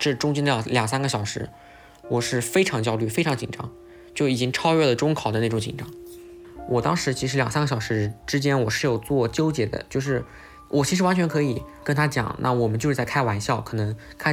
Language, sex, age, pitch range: Chinese, male, 20-39, 115-145 Hz